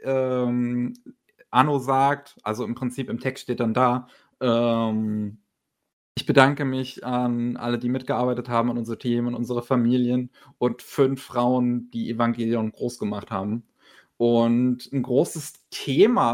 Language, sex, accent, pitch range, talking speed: German, male, German, 120-140 Hz, 140 wpm